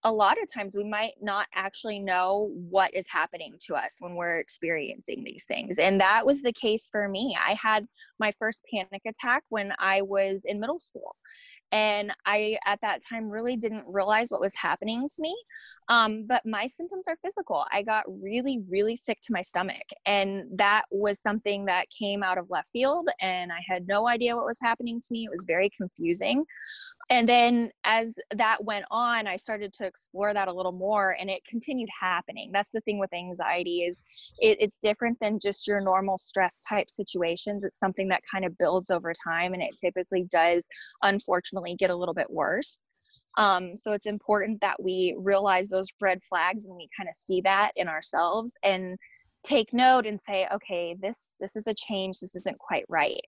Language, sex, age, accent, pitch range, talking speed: English, female, 20-39, American, 190-225 Hz, 195 wpm